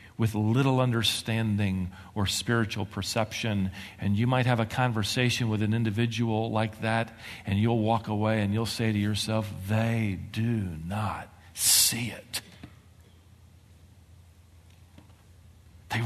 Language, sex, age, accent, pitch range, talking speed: English, male, 50-69, American, 90-120 Hz, 120 wpm